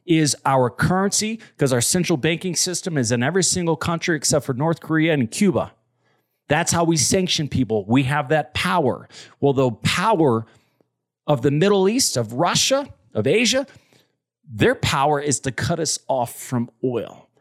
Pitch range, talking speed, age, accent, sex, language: 125-160 Hz, 165 wpm, 40-59, American, male, English